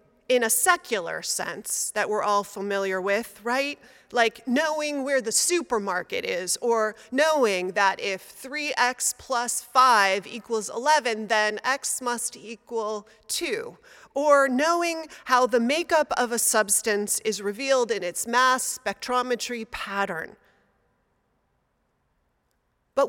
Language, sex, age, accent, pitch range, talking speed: English, female, 30-49, American, 220-285 Hz, 120 wpm